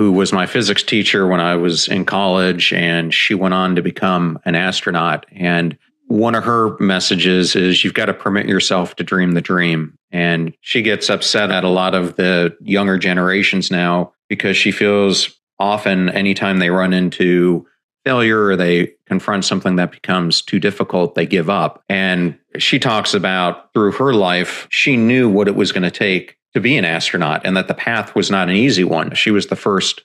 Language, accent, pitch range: English, American, 90-100 Hz